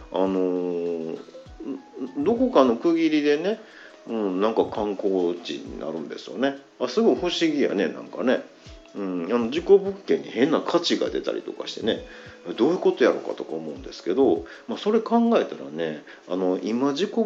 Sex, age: male, 50-69